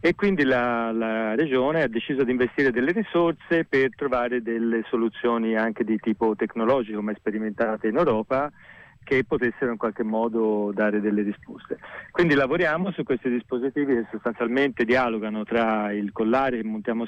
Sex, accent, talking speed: male, native, 155 wpm